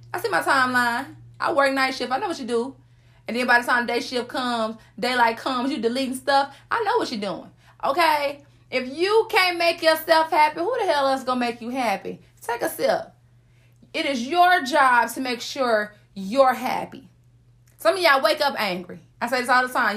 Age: 30-49